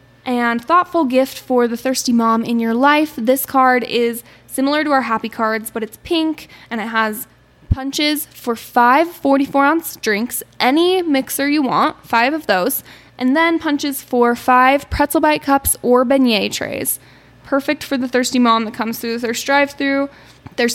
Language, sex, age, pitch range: English, female, 10-29, 235-275 Hz